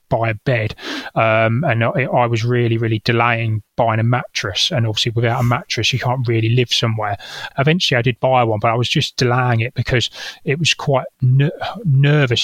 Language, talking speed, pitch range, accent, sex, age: English, 195 wpm, 115-135 Hz, British, male, 30-49